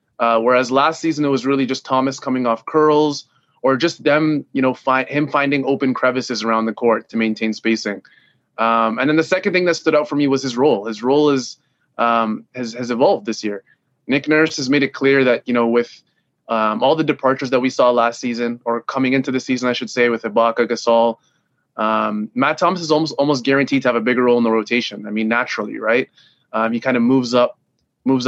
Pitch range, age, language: 115-135 Hz, 20-39, English